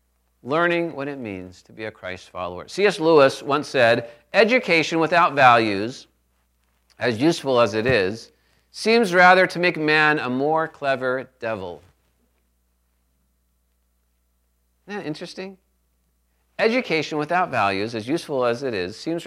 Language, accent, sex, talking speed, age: English, American, male, 130 wpm, 40-59